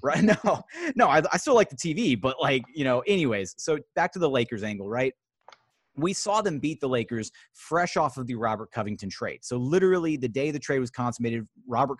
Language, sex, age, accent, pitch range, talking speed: English, male, 30-49, American, 115-140 Hz, 215 wpm